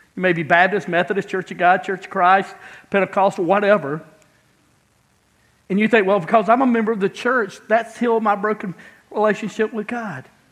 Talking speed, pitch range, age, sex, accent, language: 175 wpm, 170-215 Hz, 50-69, male, American, English